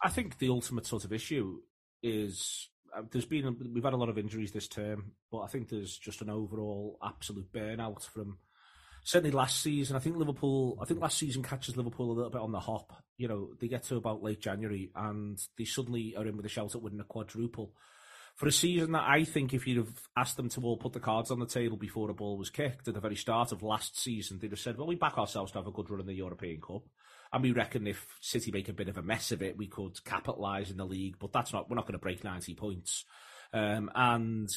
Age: 30-49